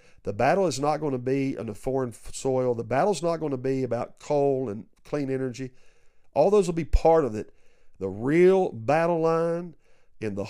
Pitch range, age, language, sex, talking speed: 120-155 Hz, 50-69, English, male, 200 wpm